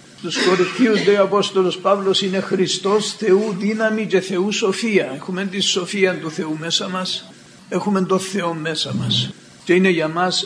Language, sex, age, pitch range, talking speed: Greek, male, 60-79, 165-195 Hz, 165 wpm